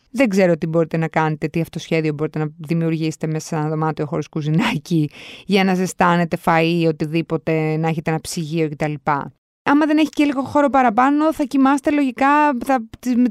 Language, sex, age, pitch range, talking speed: Greek, female, 20-39, 170-260 Hz, 195 wpm